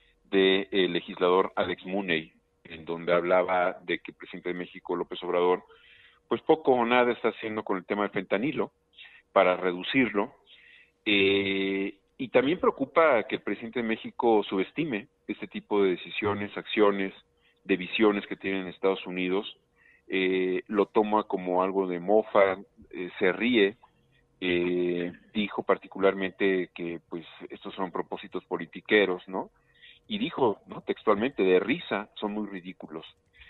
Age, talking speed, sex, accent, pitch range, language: 40-59, 140 wpm, male, Mexican, 95-110 Hz, Spanish